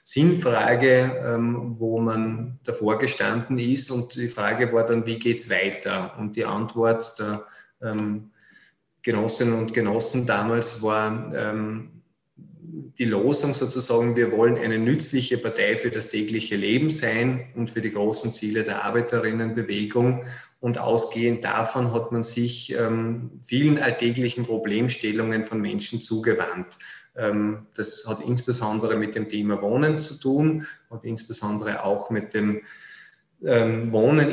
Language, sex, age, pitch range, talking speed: English, male, 20-39, 110-120 Hz, 130 wpm